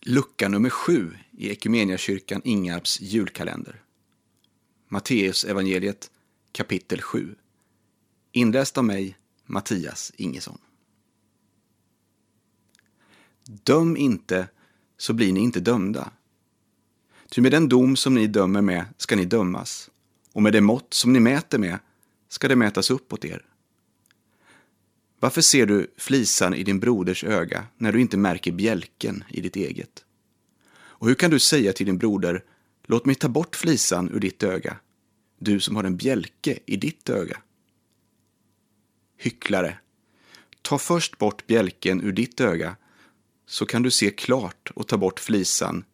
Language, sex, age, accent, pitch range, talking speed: Swedish, male, 30-49, native, 95-120 Hz, 135 wpm